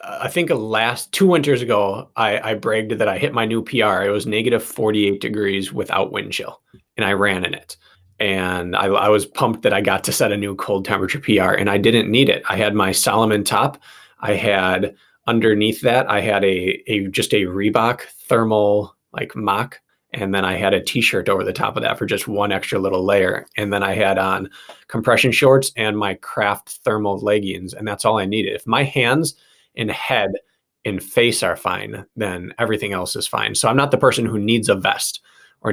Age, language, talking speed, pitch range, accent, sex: 20-39, English, 210 wpm, 100-115 Hz, American, male